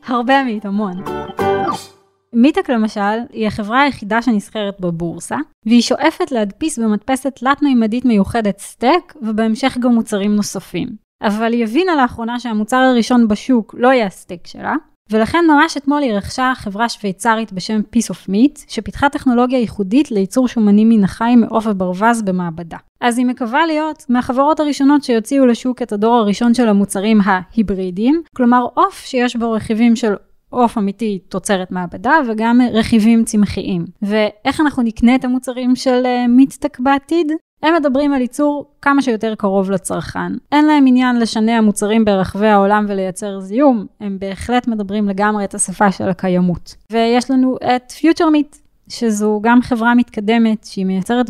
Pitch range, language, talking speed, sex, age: 205-255 Hz, Hebrew, 145 wpm, female, 20-39